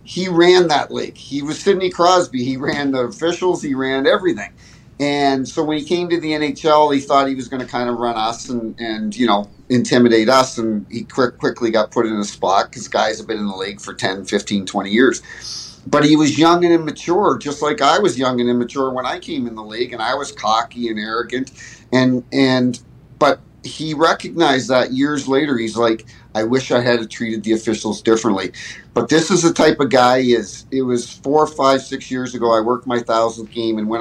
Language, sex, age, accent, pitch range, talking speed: English, male, 50-69, American, 110-135 Hz, 220 wpm